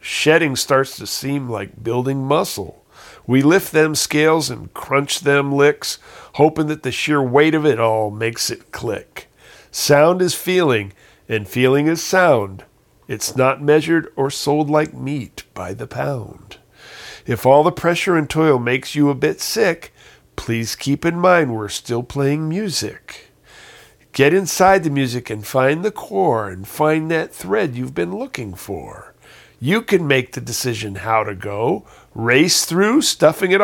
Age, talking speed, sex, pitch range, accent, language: 50-69, 160 wpm, male, 120-160 Hz, American, English